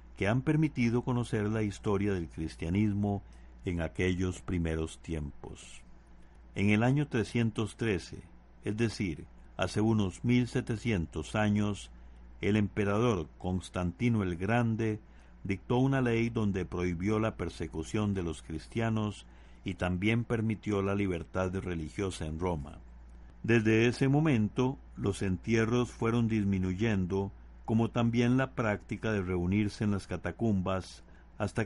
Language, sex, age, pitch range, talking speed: Spanish, male, 60-79, 85-115 Hz, 120 wpm